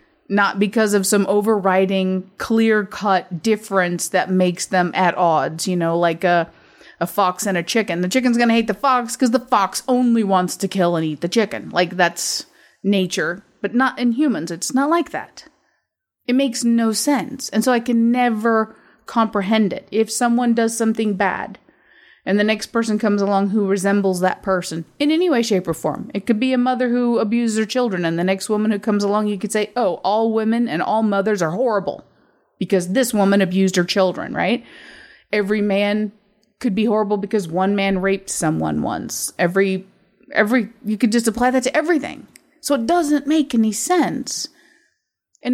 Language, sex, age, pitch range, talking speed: English, female, 30-49, 190-245 Hz, 185 wpm